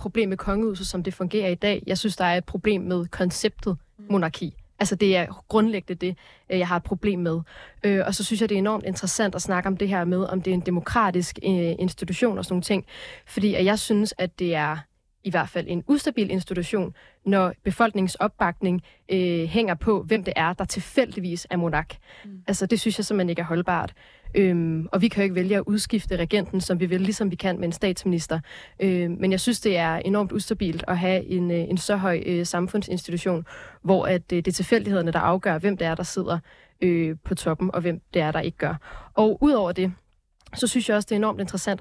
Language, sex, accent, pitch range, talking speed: Danish, female, native, 175-205 Hz, 220 wpm